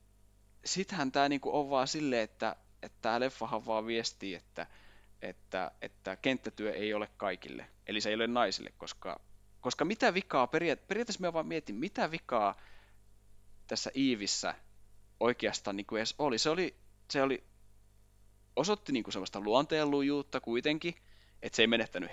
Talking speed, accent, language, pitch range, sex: 145 wpm, native, Finnish, 105-145 Hz, male